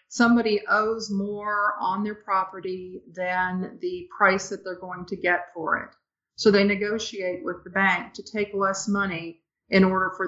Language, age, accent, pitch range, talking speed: English, 50-69, American, 185-210 Hz, 170 wpm